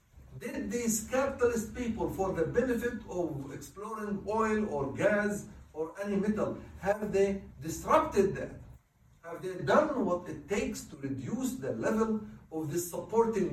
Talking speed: 140 wpm